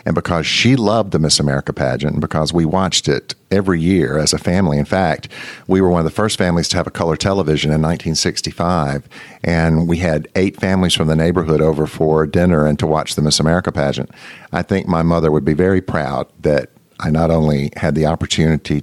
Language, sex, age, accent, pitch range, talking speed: English, male, 50-69, American, 75-90 Hz, 215 wpm